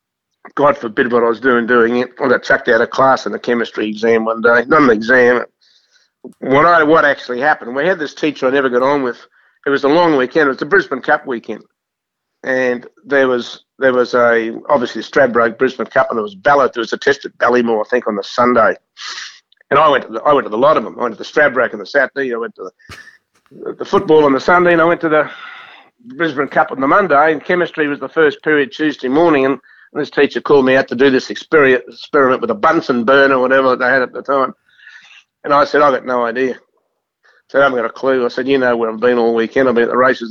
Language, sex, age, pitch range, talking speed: English, male, 60-79, 125-160 Hz, 255 wpm